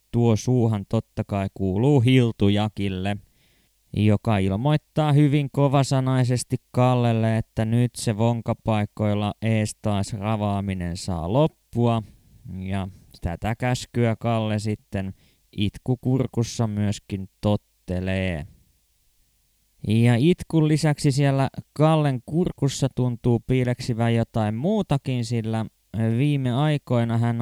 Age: 20-39